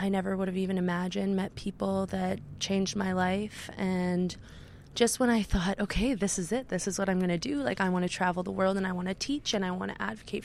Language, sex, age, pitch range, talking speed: English, female, 20-39, 180-210 Hz, 260 wpm